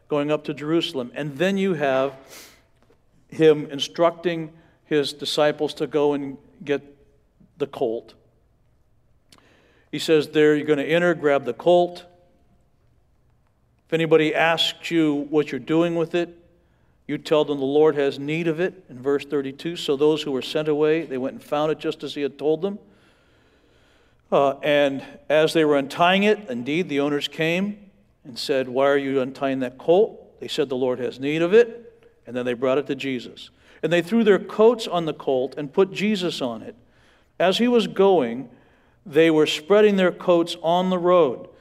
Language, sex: English, male